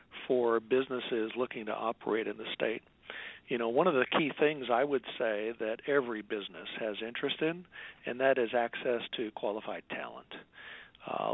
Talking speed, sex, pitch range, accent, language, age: 170 wpm, male, 115-135 Hz, American, English, 50-69